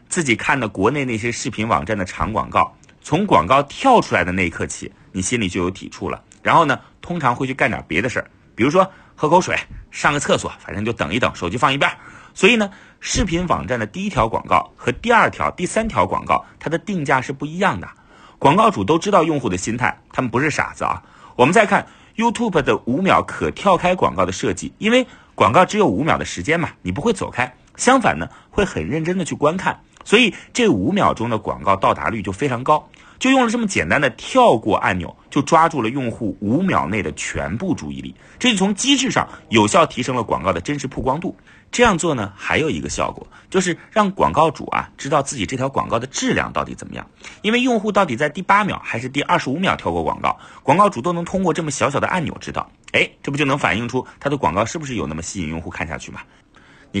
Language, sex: Chinese, male